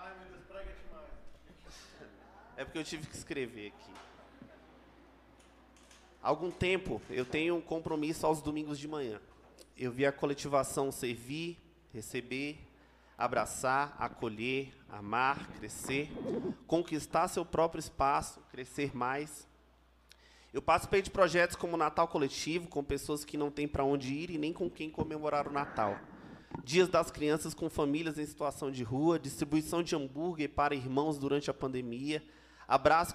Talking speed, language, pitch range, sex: 135 wpm, Portuguese, 130-160 Hz, male